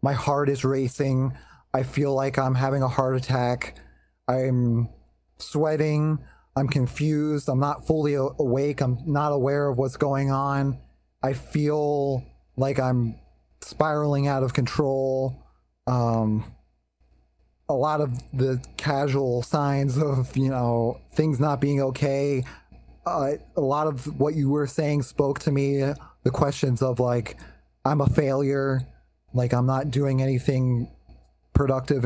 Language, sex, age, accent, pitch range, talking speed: English, male, 20-39, American, 120-140 Hz, 135 wpm